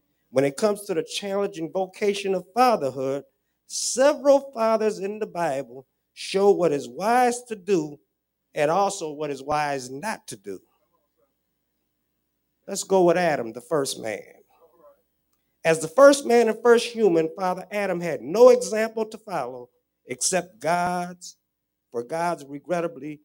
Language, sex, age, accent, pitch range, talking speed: English, male, 50-69, American, 155-215 Hz, 140 wpm